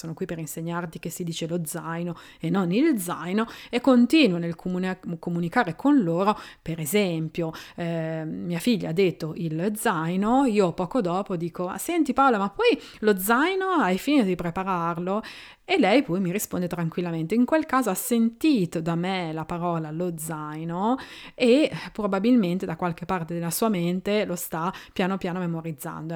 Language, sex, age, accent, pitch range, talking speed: Italian, female, 30-49, native, 170-210 Hz, 165 wpm